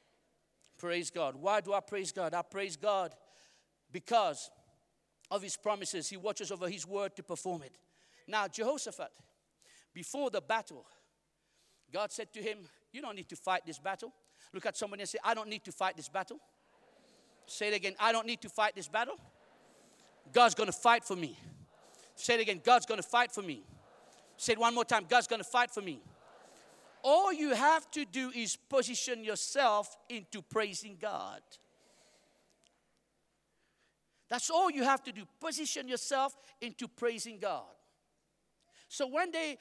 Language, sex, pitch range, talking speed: English, male, 200-270 Hz, 170 wpm